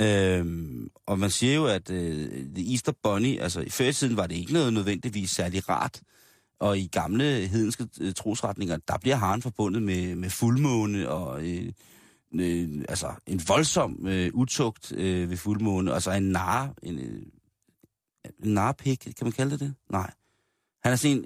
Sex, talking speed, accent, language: male, 165 wpm, native, Danish